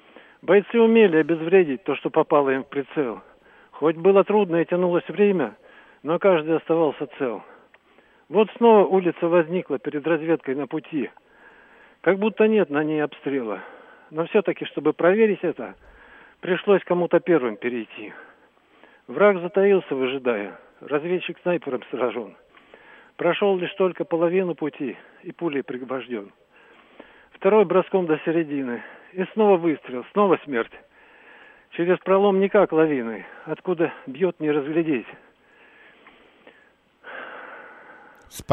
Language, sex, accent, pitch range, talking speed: Russian, male, native, 150-195 Hz, 115 wpm